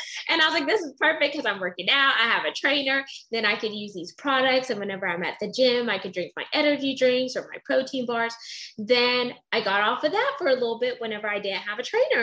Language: English